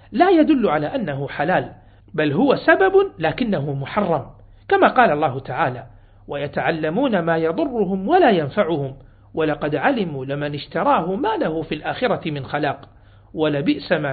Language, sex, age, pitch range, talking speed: Arabic, male, 50-69, 135-190 Hz, 125 wpm